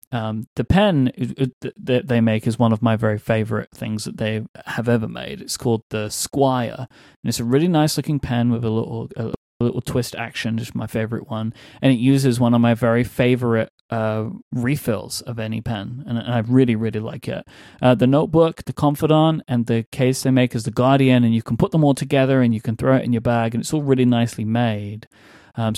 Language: English